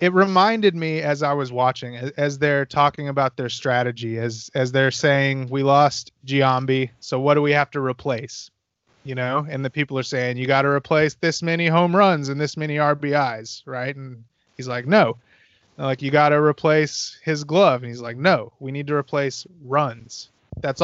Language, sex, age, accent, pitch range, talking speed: English, male, 30-49, American, 130-150 Hz, 200 wpm